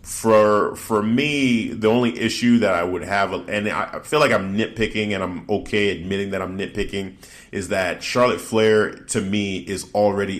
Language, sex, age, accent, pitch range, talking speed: English, male, 30-49, American, 95-110 Hz, 180 wpm